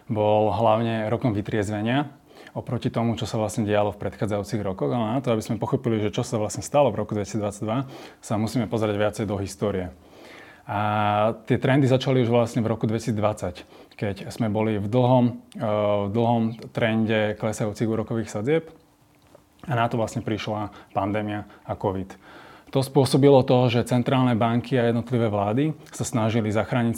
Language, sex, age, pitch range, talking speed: Slovak, male, 30-49, 105-120 Hz, 160 wpm